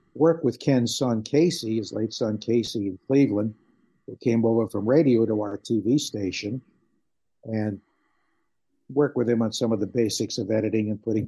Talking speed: 175 wpm